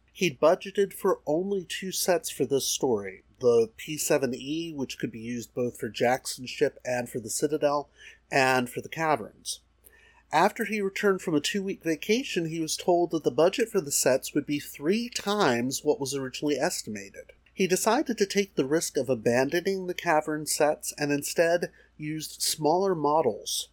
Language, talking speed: English, 170 wpm